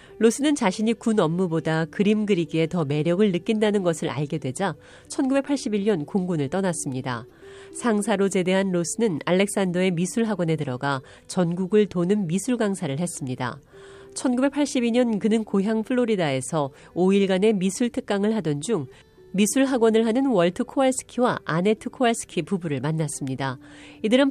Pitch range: 155-225 Hz